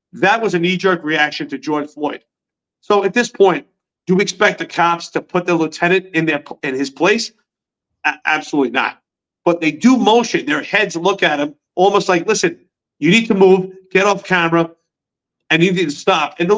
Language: English